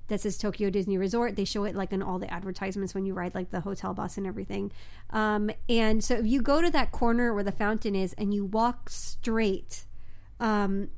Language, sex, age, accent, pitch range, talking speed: English, female, 30-49, American, 170-225 Hz, 220 wpm